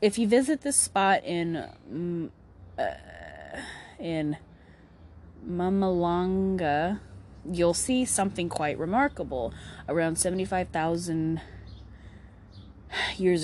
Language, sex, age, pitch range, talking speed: English, female, 20-39, 145-185 Hz, 75 wpm